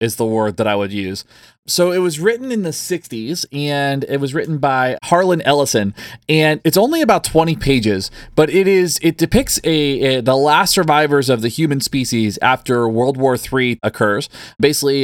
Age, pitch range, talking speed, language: 20-39, 120-150 Hz, 190 wpm, English